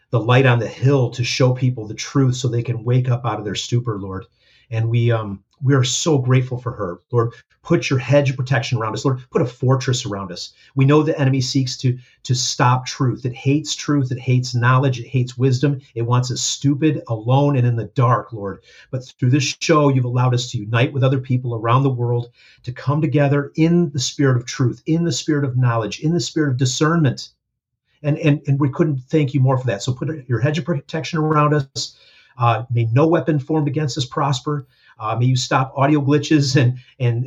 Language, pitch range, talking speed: English, 120-140 Hz, 220 wpm